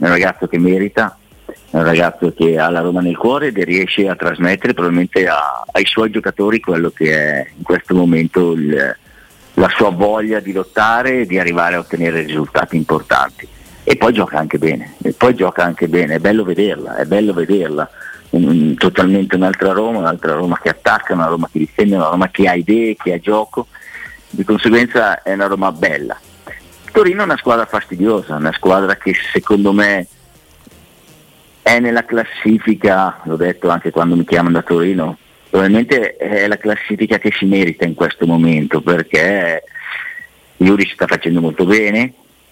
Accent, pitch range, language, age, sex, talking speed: native, 85-105 Hz, Italian, 50-69, male, 175 wpm